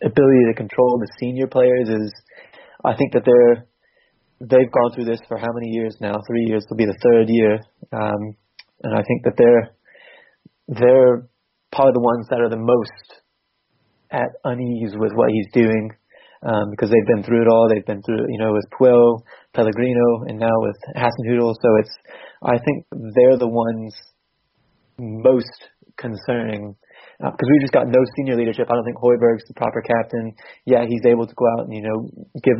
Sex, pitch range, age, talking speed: male, 110-125 Hz, 20-39, 185 wpm